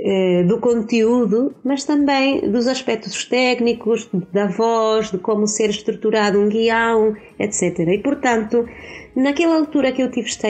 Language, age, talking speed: Portuguese, 30-49, 135 wpm